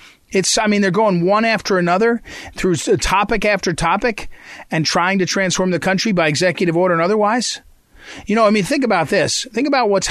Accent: American